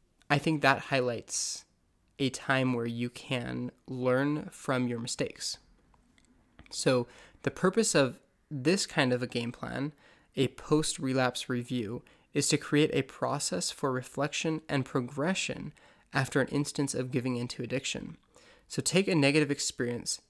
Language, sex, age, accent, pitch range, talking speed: English, male, 20-39, American, 120-145 Hz, 140 wpm